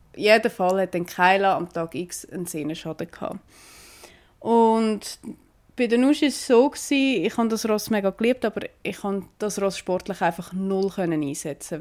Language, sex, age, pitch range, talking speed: German, female, 20-39, 180-230 Hz, 175 wpm